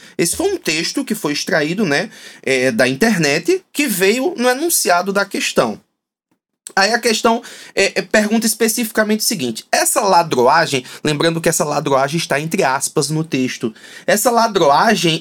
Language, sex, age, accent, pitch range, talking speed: Portuguese, male, 20-39, Brazilian, 170-230 Hz, 140 wpm